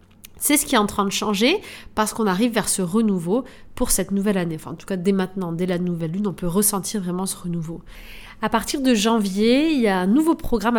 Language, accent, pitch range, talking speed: French, French, 190-235 Hz, 245 wpm